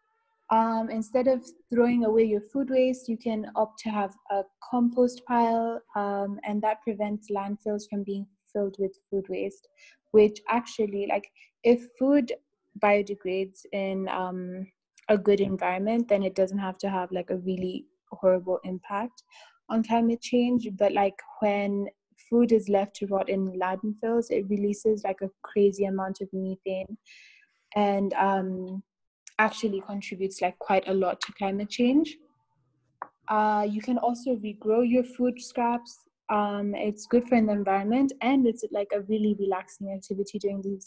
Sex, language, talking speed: female, English, 155 wpm